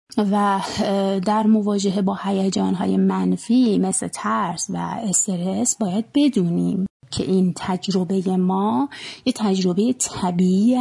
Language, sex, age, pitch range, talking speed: Persian, female, 30-49, 185-220 Hz, 110 wpm